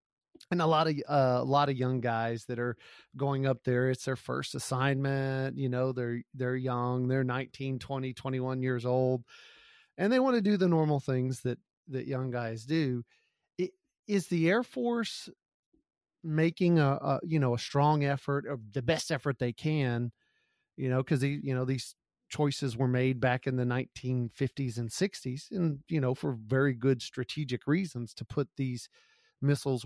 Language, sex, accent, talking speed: English, male, American, 175 wpm